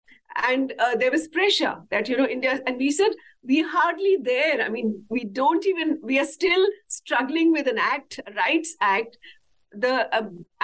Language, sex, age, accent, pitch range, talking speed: English, female, 50-69, Indian, 250-345 Hz, 180 wpm